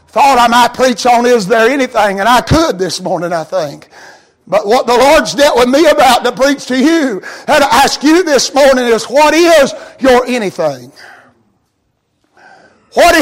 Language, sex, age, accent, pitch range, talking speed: English, male, 60-79, American, 275-340 Hz, 175 wpm